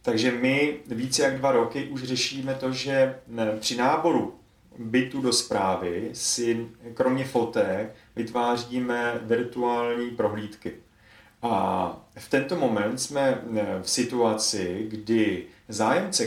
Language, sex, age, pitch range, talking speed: Czech, male, 30-49, 110-130 Hz, 110 wpm